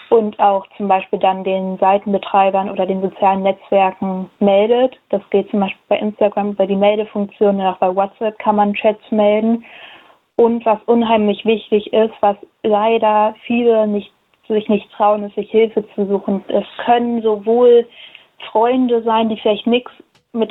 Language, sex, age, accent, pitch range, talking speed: German, female, 20-39, German, 200-220 Hz, 160 wpm